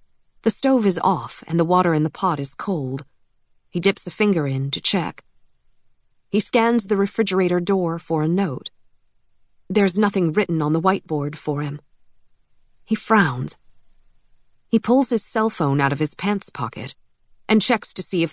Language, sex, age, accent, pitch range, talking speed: English, female, 40-59, American, 135-205 Hz, 170 wpm